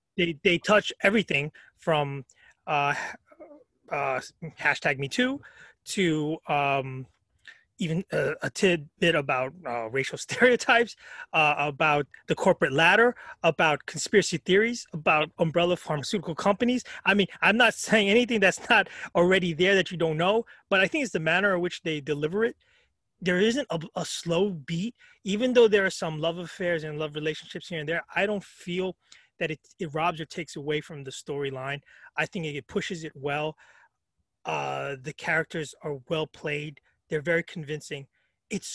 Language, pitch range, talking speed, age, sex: English, 150-195 Hz, 165 wpm, 30-49, male